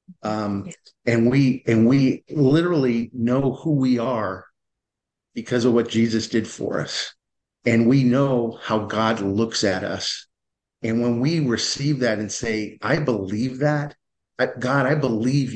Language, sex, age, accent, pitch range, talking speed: English, male, 50-69, American, 115-140 Hz, 145 wpm